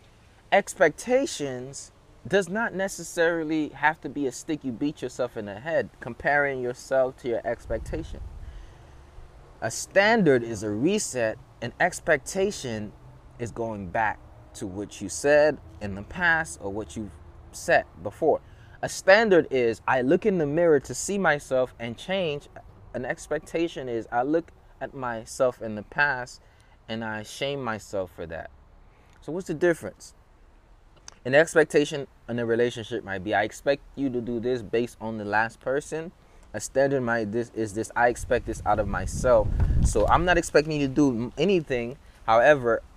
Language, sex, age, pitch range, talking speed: English, male, 20-39, 95-140 Hz, 160 wpm